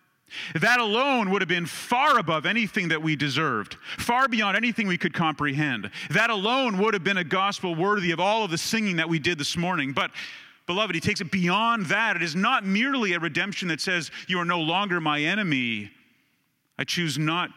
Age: 40-59